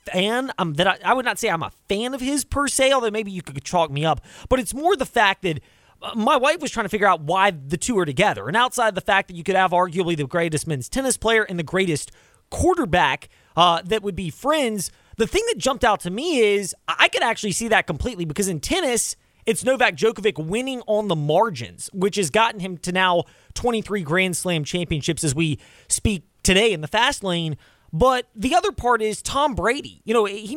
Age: 20-39